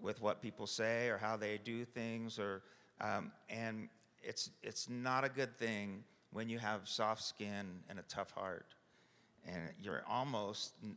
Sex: male